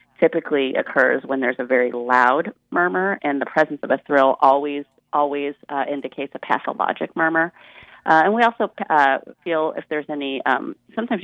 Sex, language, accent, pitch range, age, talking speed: female, English, American, 135-160 Hz, 30-49, 170 wpm